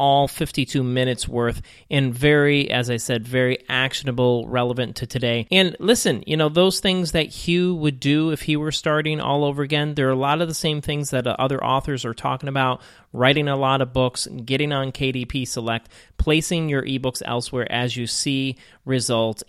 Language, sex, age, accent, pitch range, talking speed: English, male, 30-49, American, 125-150 Hz, 190 wpm